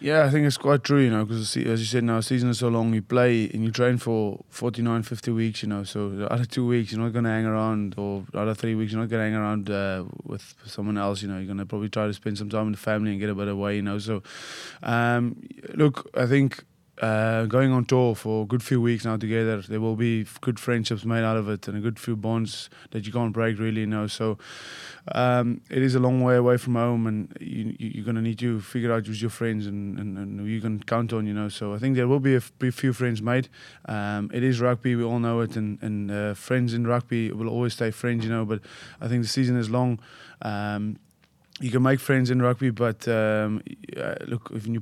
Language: English